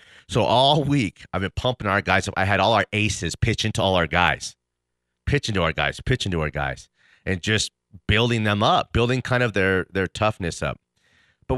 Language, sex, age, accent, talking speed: English, male, 30-49, American, 205 wpm